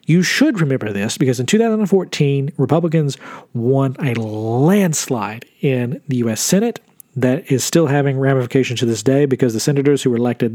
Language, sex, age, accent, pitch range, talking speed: English, male, 40-59, American, 125-160 Hz, 165 wpm